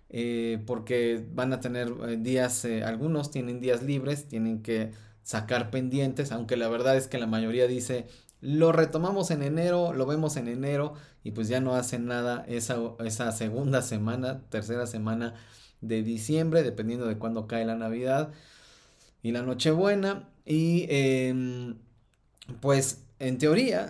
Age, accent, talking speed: 30-49, Mexican, 150 wpm